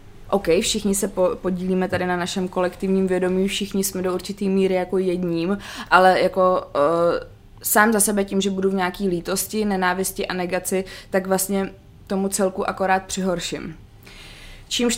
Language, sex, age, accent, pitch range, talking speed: Czech, female, 20-39, native, 170-190 Hz, 155 wpm